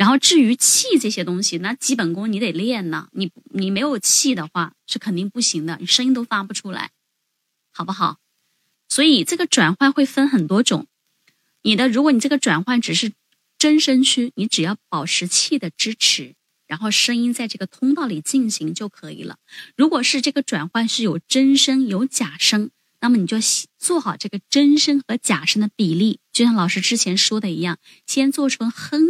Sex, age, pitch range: female, 20-39, 205-290 Hz